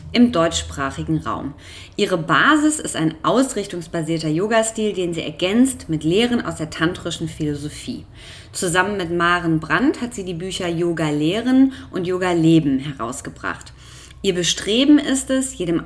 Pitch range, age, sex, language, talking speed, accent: 160-225 Hz, 20-39, female, German, 130 wpm, German